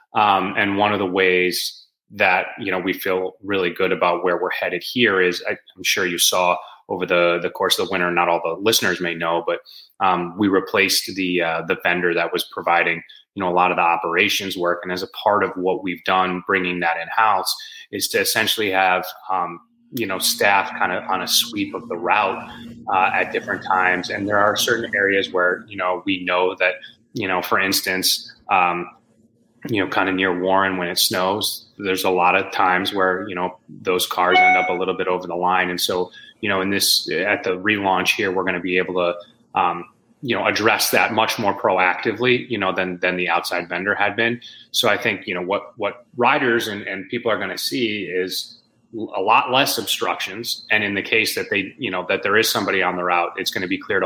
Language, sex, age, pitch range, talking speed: English, male, 30-49, 90-95 Hz, 225 wpm